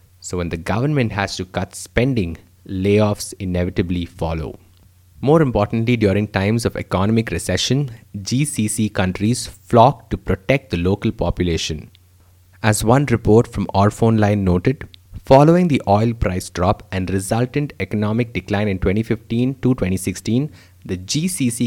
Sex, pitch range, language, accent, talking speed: male, 95-115 Hz, English, Indian, 130 wpm